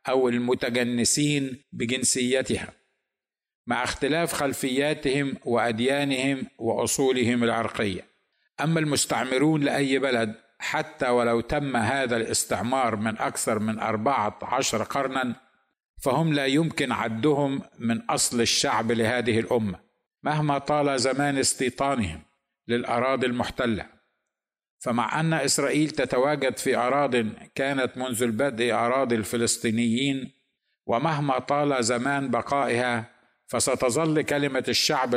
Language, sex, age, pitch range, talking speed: Arabic, male, 50-69, 120-140 Hz, 95 wpm